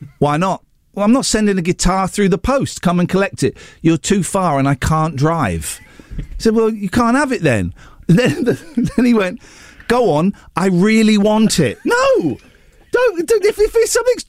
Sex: male